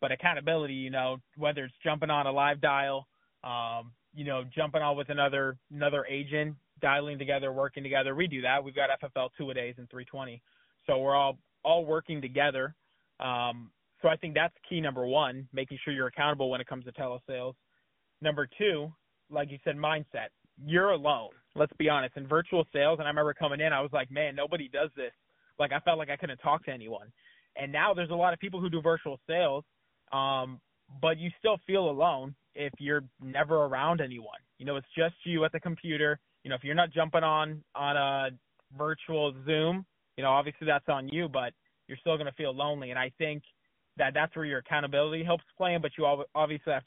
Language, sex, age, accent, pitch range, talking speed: English, male, 20-39, American, 135-160 Hz, 205 wpm